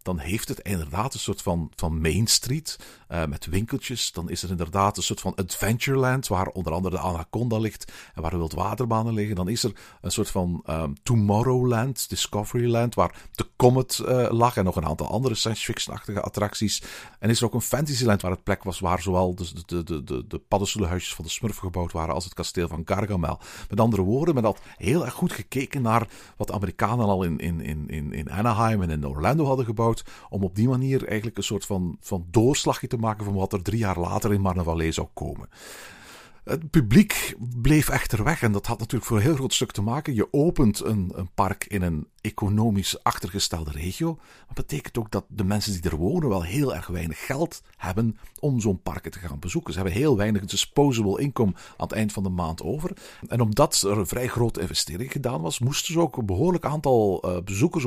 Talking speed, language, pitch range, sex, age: 210 wpm, Dutch, 90-125 Hz, male, 50-69